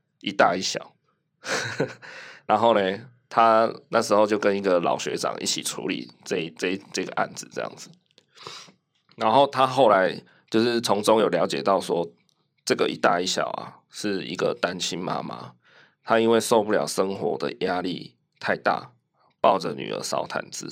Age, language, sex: 20-39, Chinese, male